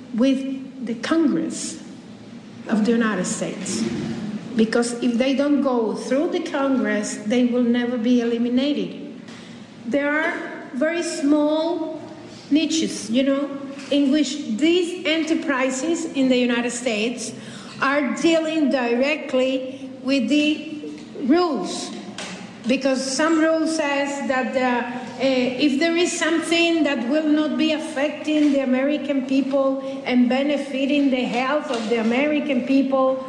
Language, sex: English, female